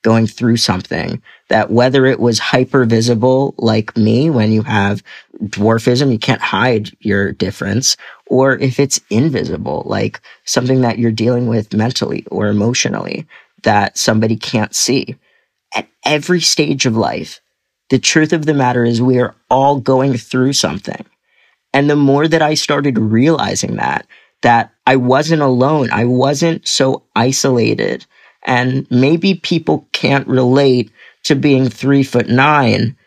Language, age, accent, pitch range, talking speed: English, 40-59, American, 115-140 Hz, 145 wpm